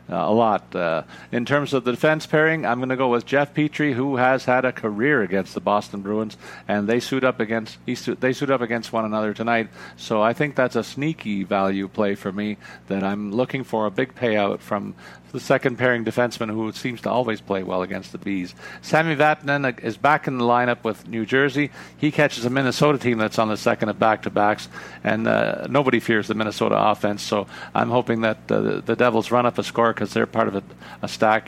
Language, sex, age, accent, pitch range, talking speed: English, male, 50-69, American, 110-130 Hz, 225 wpm